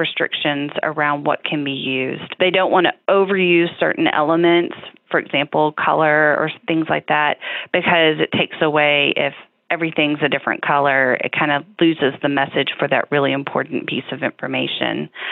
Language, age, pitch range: English, 30-49, 150-175 Hz